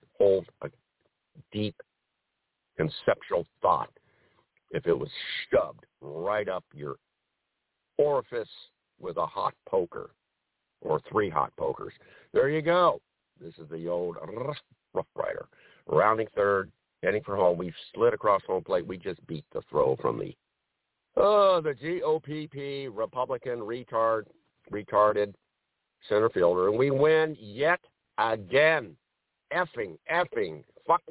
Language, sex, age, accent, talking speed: English, male, 60-79, American, 125 wpm